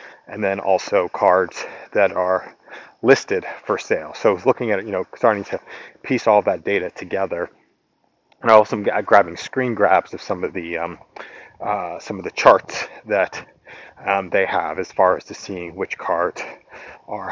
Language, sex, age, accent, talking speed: English, male, 30-49, American, 170 wpm